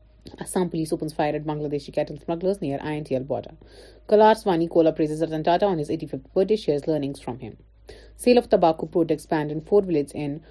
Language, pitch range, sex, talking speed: Urdu, 150-190 Hz, female, 195 wpm